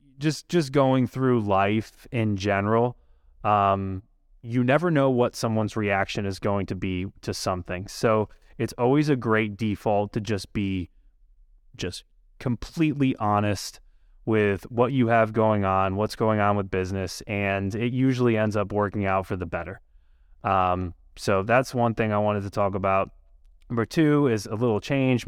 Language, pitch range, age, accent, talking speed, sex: English, 95-120 Hz, 20-39, American, 165 wpm, male